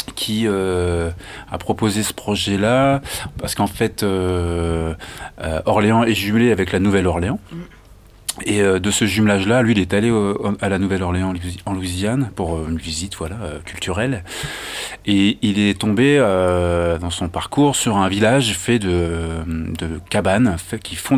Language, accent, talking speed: French, French, 155 wpm